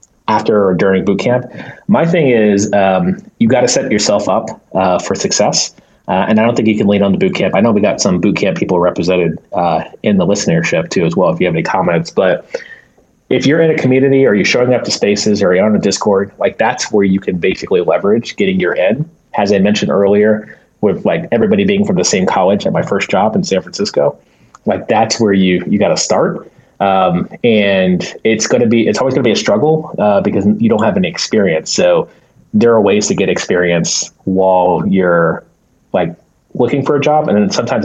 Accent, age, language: American, 30-49, English